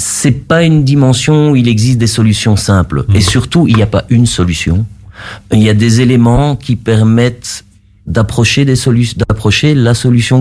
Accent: French